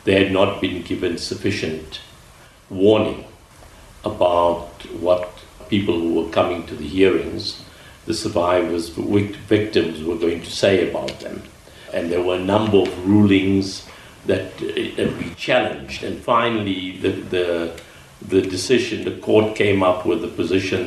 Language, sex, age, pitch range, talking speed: English, male, 60-79, 85-100 Hz, 145 wpm